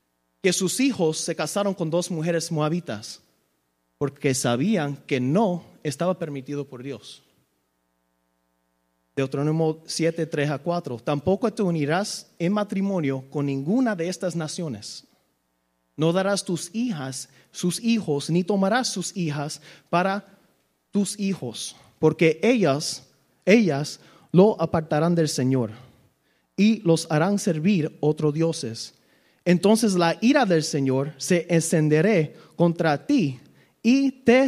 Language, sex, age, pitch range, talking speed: Spanish, male, 30-49, 130-175 Hz, 120 wpm